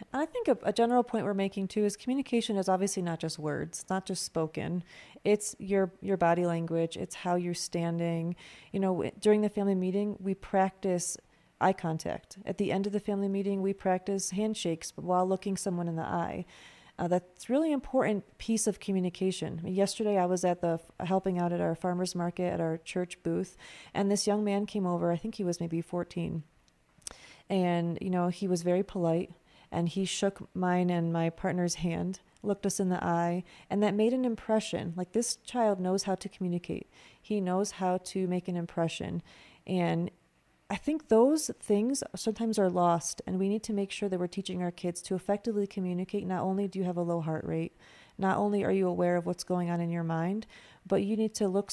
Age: 30-49